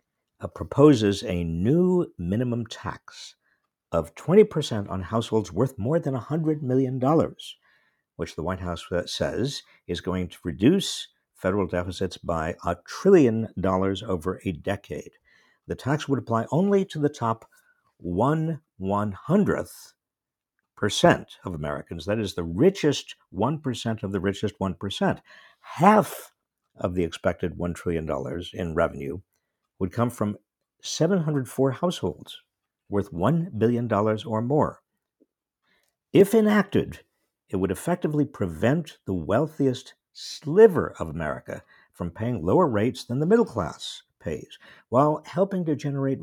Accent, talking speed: American, 125 wpm